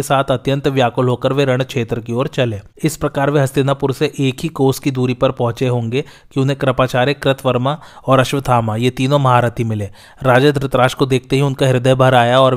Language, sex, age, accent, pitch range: Hindi, male, 30-49, native, 125-140 Hz